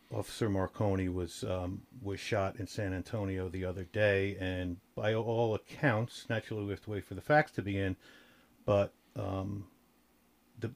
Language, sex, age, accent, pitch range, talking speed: English, male, 50-69, American, 95-120 Hz, 165 wpm